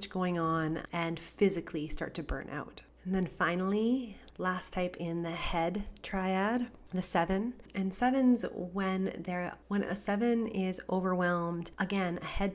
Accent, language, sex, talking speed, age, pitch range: American, English, female, 150 wpm, 30-49, 160-195 Hz